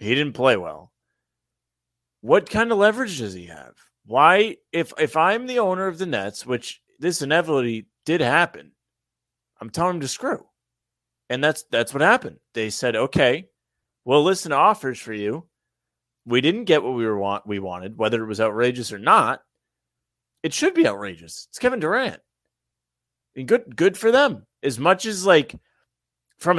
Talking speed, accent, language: 170 wpm, American, English